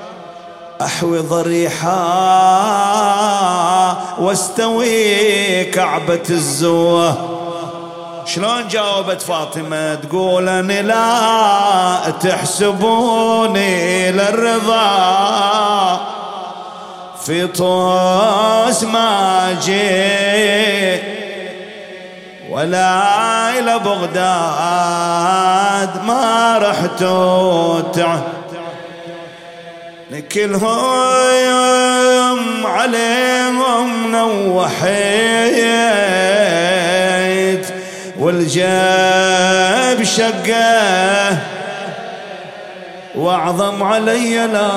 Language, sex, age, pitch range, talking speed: English, male, 30-49, 180-230 Hz, 40 wpm